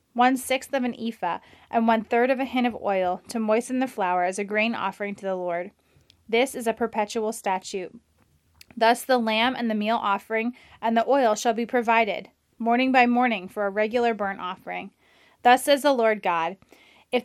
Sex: female